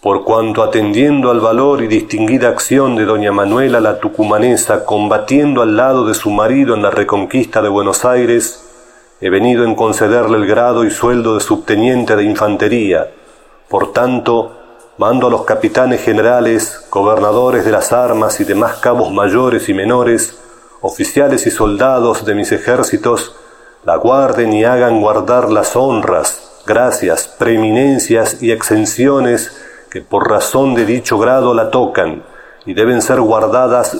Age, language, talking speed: 40-59, Spanish, 145 wpm